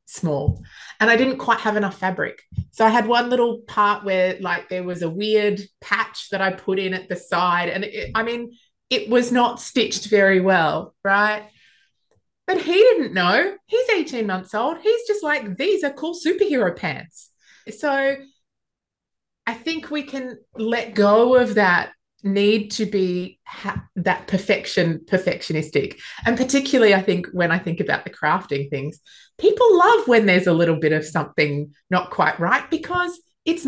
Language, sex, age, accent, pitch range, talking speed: English, female, 20-39, Australian, 170-250 Hz, 165 wpm